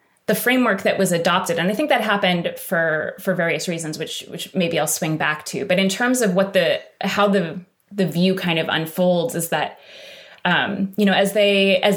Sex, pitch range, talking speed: female, 165-200 Hz, 205 wpm